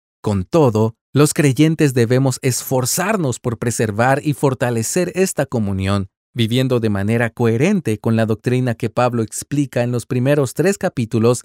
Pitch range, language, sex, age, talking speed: 110-165 Hz, Spanish, male, 40-59, 140 wpm